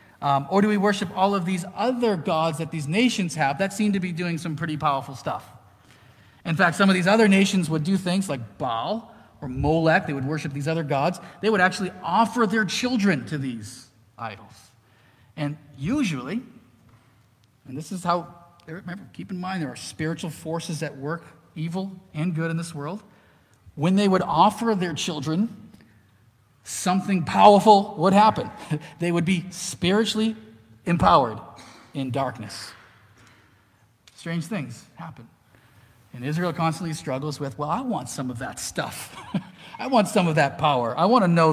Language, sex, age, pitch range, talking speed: English, male, 40-59, 130-185 Hz, 170 wpm